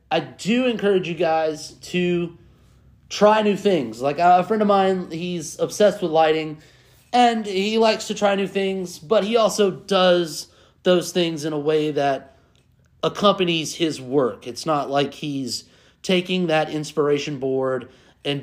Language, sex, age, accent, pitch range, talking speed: English, male, 30-49, American, 135-180 Hz, 155 wpm